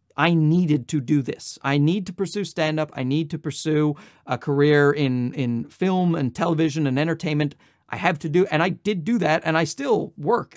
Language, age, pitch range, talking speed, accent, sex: English, 40-59, 140-180 Hz, 205 wpm, American, male